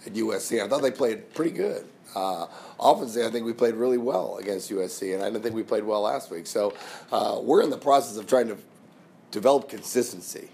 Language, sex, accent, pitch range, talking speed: English, male, American, 100-125 Hz, 215 wpm